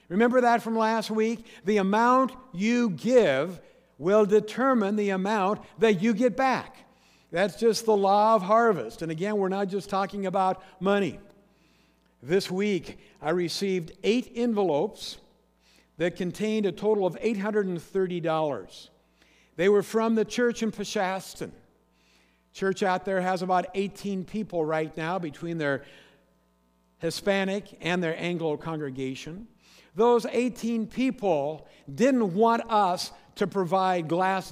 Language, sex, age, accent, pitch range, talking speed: English, male, 60-79, American, 185-225 Hz, 130 wpm